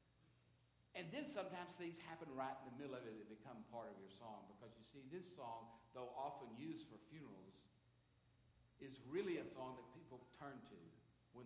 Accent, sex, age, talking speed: American, male, 60-79, 190 wpm